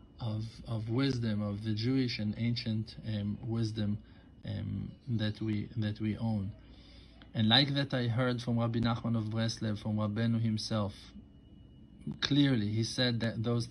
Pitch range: 110-140 Hz